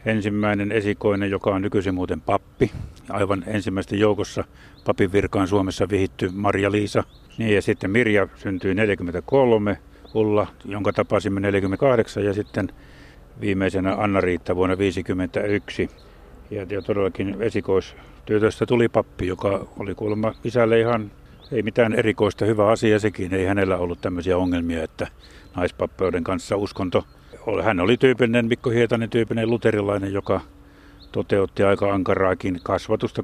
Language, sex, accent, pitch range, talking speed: Finnish, male, native, 95-110 Hz, 125 wpm